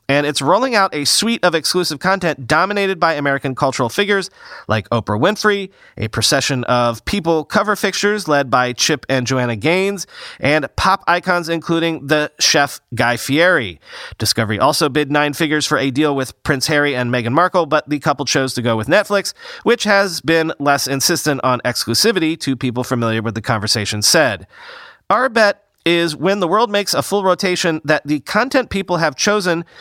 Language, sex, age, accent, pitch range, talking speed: English, male, 30-49, American, 125-180 Hz, 180 wpm